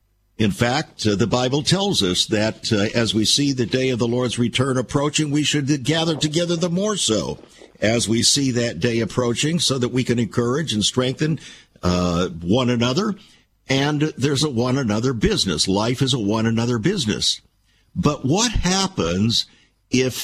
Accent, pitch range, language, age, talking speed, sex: American, 110-150 Hz, English, 60-79, 165 wpm, male